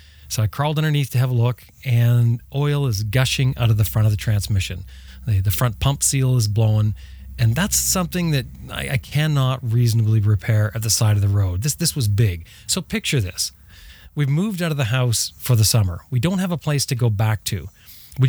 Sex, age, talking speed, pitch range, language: male, 30-49, 215 wpm, 105-135 Hz, English